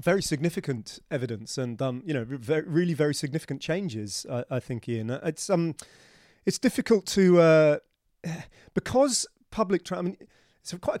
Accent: British